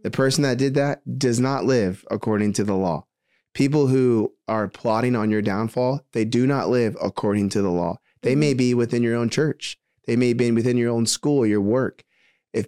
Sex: male